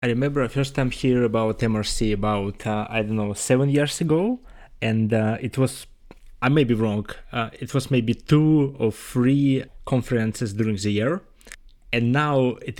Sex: male